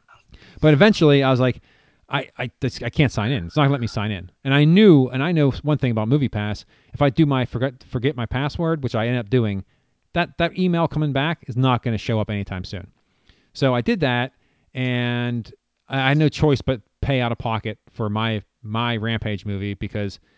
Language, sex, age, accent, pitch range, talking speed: English, male, 30-49, American, 115-145 Hz, 220 wpm